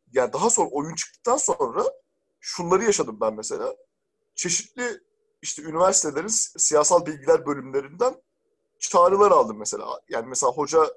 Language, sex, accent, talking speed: Turkish, male, native, 125 wpm